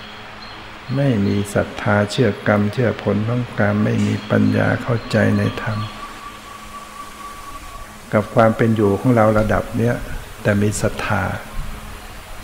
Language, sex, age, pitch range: Thai, male, 60-79, 105-110 Hz